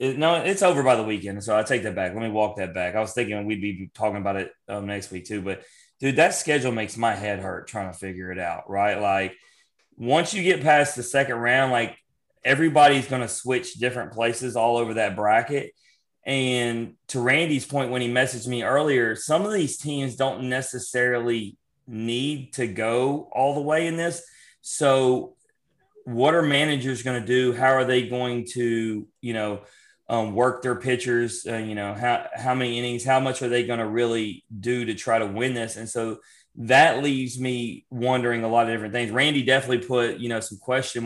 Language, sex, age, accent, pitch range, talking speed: English, male, 30-49, American, 110-130 Hz, 205 wpm